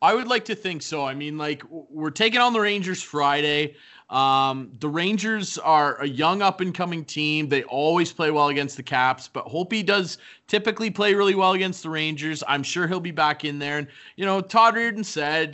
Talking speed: 205 wpm